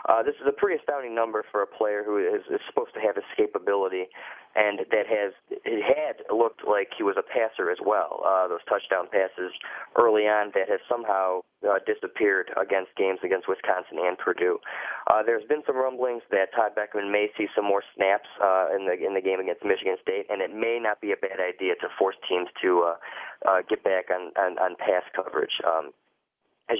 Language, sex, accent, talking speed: English, male, American, 205 wpm